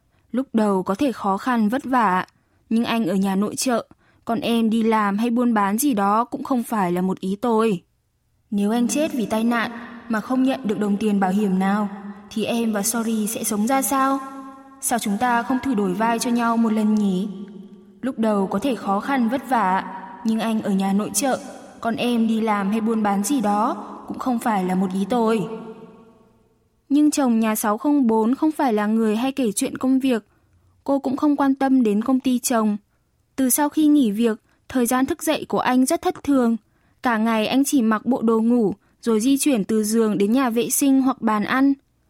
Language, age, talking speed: Vietnamese, 10-29, 215 wpm